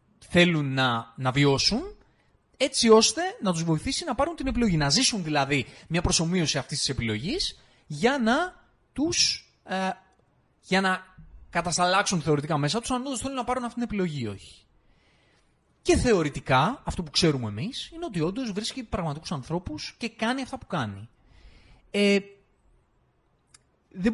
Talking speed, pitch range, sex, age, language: 145 wpm, 140-220 Hz, male, 30-49, Greek